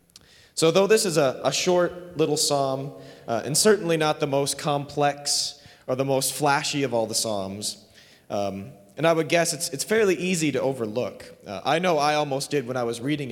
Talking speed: 205 wpm